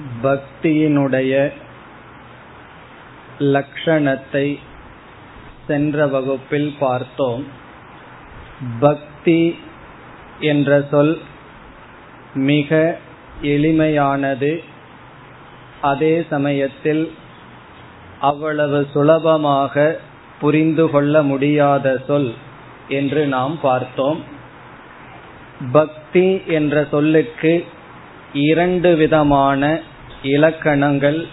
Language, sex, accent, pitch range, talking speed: Tamil, male, native, 140-160 Hz, 50 wpm